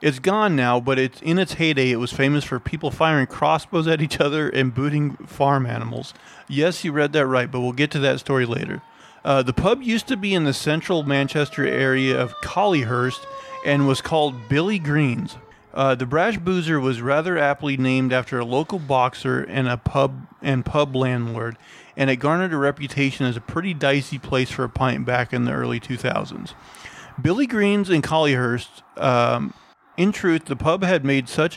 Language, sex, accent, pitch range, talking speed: English, male, American, 130-160 Hz, 190 wpm